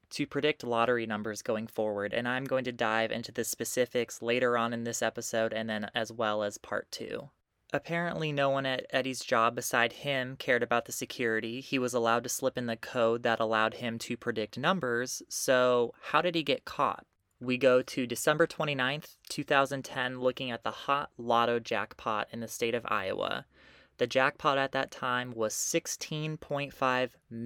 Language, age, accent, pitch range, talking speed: English, 20-39, American, 115-135 Hz, 180 wpm